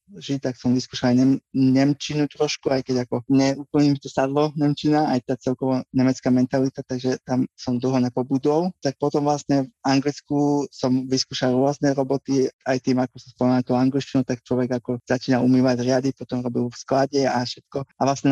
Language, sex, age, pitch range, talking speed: Slovak, male, 20-39, 125-140 Hz, 180 wpm